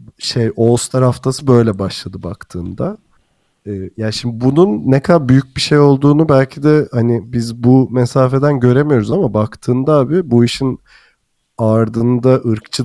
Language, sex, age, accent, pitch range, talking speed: Turkish, male, 40-59, native, 115-135 Hz, 145 wpm